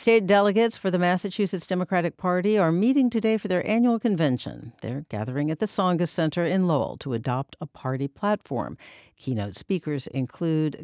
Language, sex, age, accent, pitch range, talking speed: English, female, 60-79, American, 130-185 Hz, 165 wpm